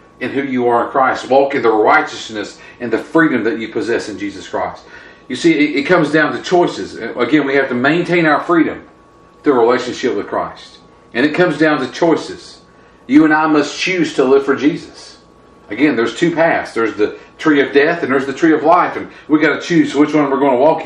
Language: English